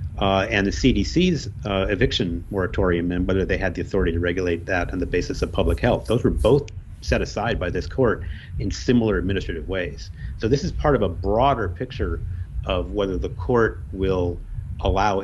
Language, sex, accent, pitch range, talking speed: English, male, American, 90-110 Hz, 190 wpm